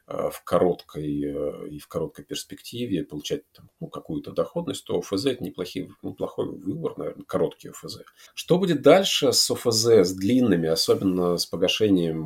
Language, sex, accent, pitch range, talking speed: Russian, male, native, 80-100 Hz, 150 wpm